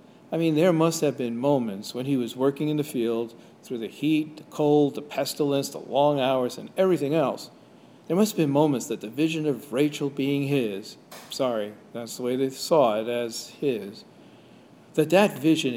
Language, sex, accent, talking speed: English, male, American, 195 wpm